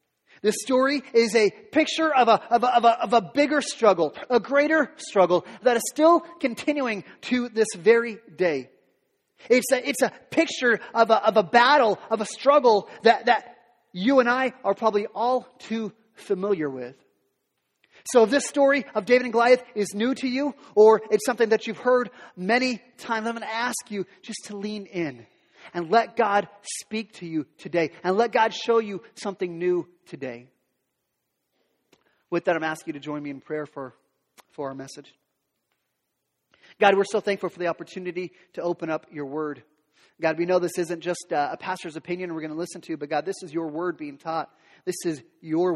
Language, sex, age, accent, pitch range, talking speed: English, male, 30-49, American, 170-230 Hz, 190 wpm